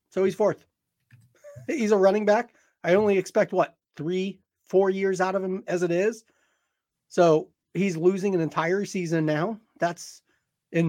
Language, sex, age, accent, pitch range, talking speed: English, male, 30-49, American, 155-200 Hz, 160 wpm